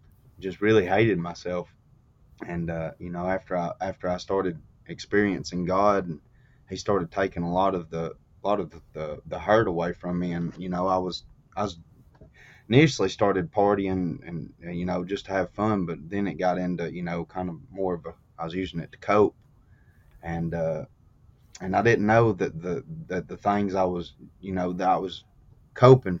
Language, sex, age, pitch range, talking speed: English, male, 30-49, 85-100 Hz, 200 wpm